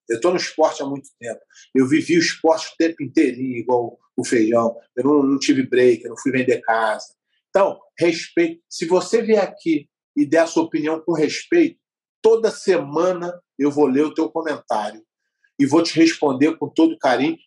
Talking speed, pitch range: 190 wpm, 140-195 Hz